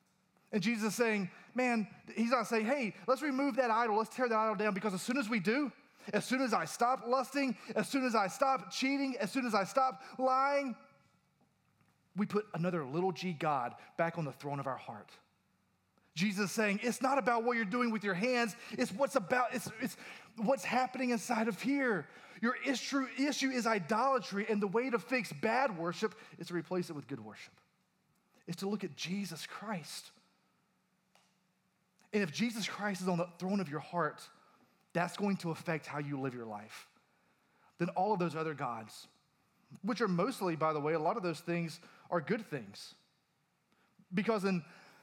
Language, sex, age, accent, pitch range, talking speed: English, male, 30-49, American, 175-235 Hz, 190 wpm